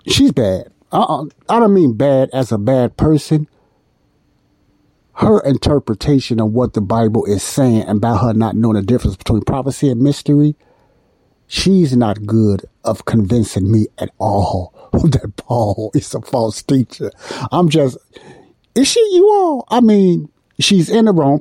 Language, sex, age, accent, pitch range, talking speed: English, male, 50-69, American, 110-150 Hz, 155 wpm